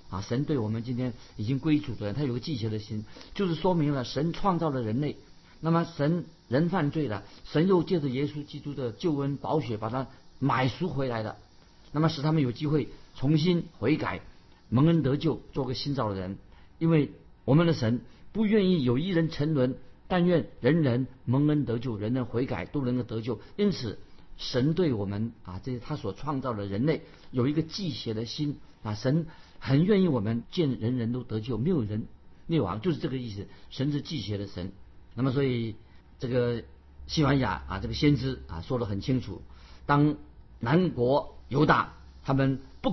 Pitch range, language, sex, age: 110-150 Hz, Chinese, male, 50-69